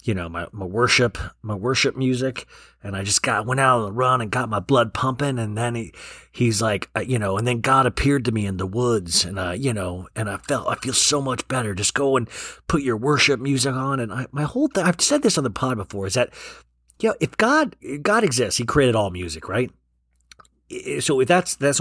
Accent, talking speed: American, 240 wpm